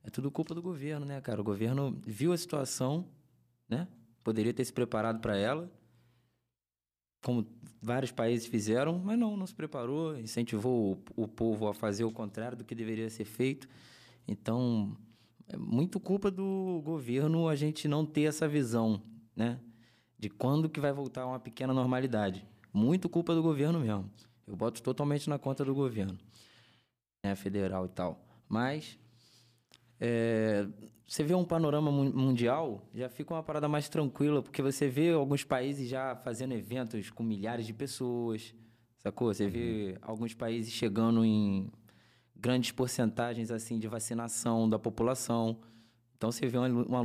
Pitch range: 110-135 Hz